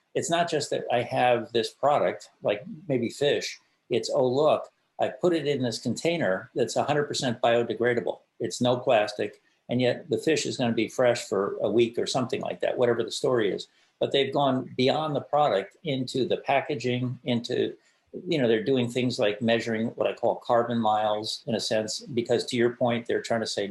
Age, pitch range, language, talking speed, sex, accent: 50-69, 115-135 Hz, English, 195 wpm, male, American